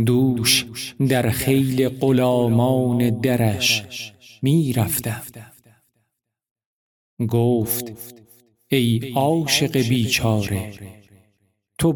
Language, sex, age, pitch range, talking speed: Persian, male, 40-59, 110-130 Hz, 60 wpm